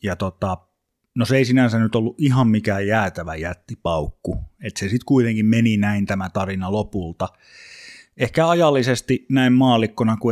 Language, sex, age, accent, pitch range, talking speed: Finnish, male, 30-49, native, 100-120 Hz, 150 wpm